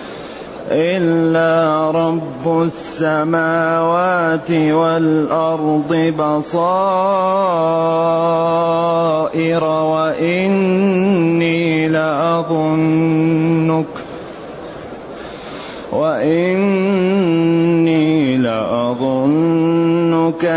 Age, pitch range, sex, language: 30-49, 160-170 Hz, male, Arabic